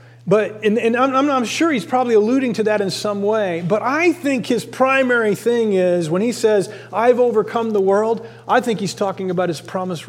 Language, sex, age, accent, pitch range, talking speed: English, male, 40-59, American, 150-230 Hz, 210 wpm